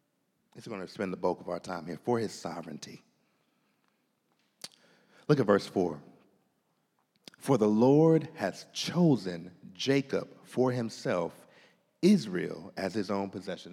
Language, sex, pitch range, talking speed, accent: English, male, 105-145 Hz, 130 wpm, American